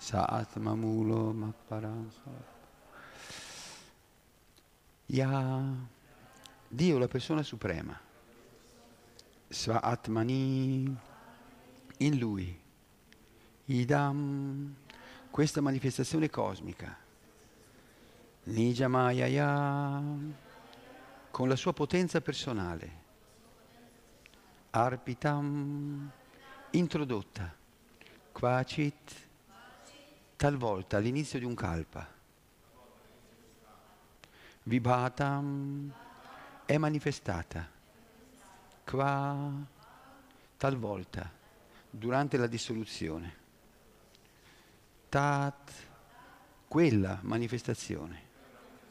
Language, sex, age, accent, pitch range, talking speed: Italian, male, 50-69, native, 110-145 Hz, 50 wpm